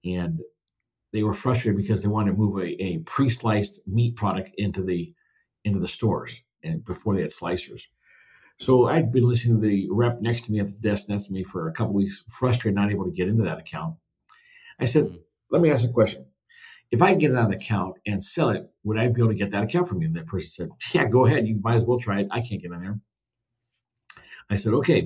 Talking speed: 240 wpm